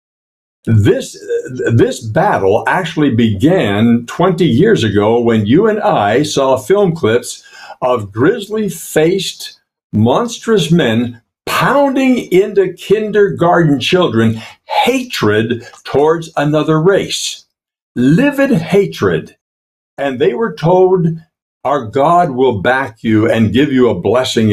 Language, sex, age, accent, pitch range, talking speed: English, male, 60-79, American, 115-190 Hz, 105 wpm